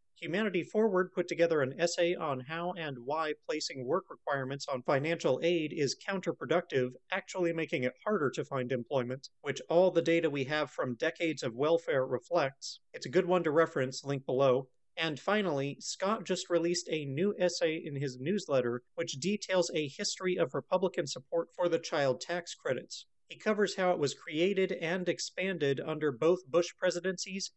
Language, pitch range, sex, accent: English, 145-180 Hz, male, American